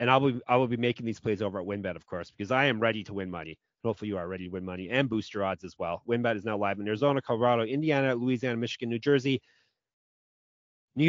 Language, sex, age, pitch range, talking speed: English, male, 30-49, 100-135 Hz, 255 wpm